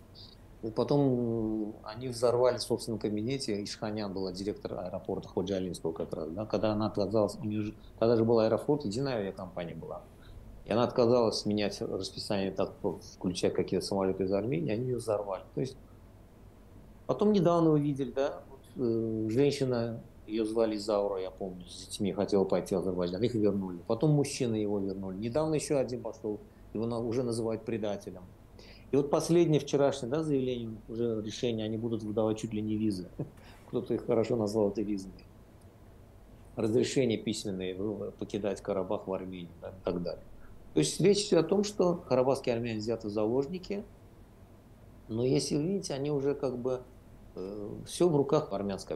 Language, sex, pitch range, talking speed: Russian, male, 100-125 Hz, 160 wpm